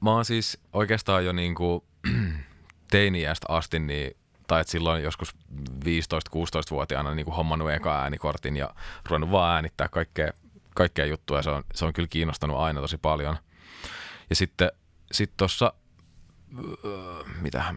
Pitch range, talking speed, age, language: 75-85 Hz, 130 wpm, 30-49, Finnish